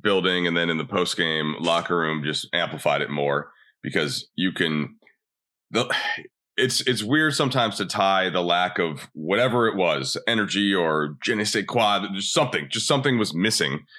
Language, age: English, 30-49